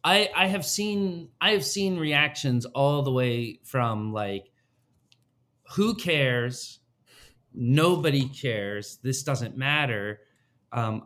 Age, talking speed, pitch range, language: 30-49, 115 wpm, 120-170 Hz, English